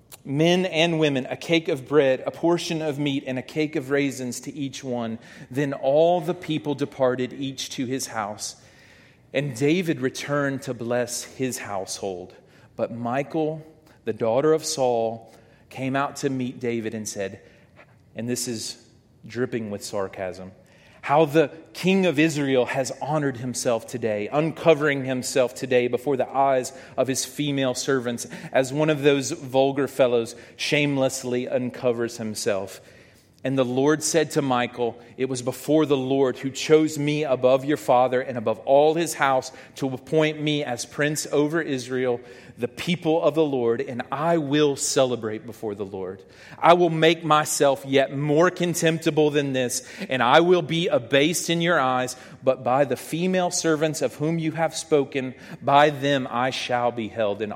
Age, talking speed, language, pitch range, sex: 40-59, 165 wpm, English, 125-155 Hz, male